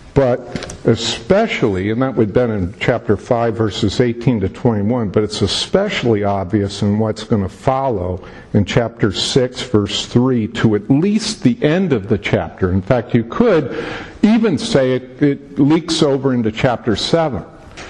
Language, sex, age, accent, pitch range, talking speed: English, male, 50-69, American, 115-155 Hz, 165 wpm